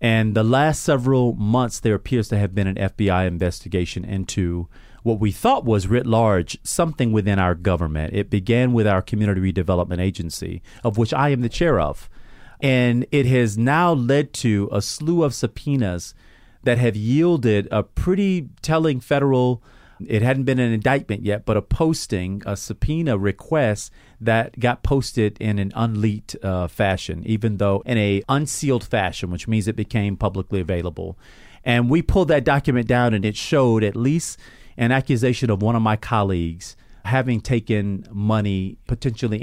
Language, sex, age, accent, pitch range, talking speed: English, male, 40-59, American, 100-130 Hz, 165 wpm